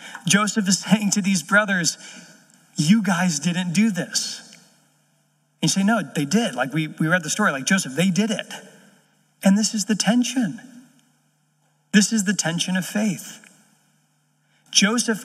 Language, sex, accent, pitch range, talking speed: English, male, American, 165-210 Hz, 155 wpm